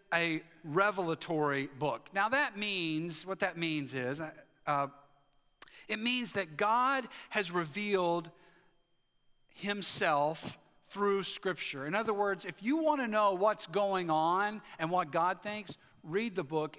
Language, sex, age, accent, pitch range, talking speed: English, male, 50-69, American, 155-205 Hz, 135 wpm